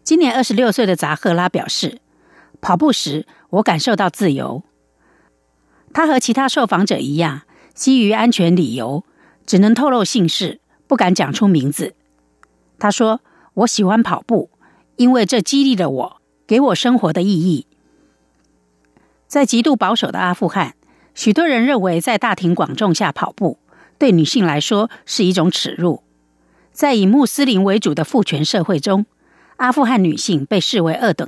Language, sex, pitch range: German, female, 160-240 Hz